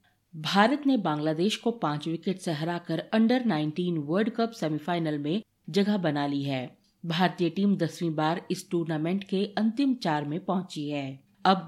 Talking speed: 160 wpm